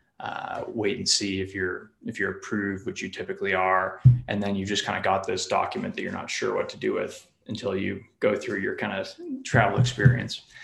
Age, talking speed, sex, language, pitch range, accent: 20-39, 220 wpm, male, English, 100-125 Hz, American